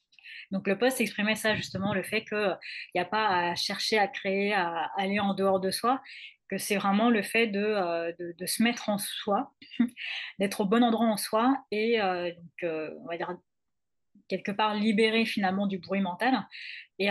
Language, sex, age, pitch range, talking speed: French, female, 20-39, 190-230 Hz, 205 wpm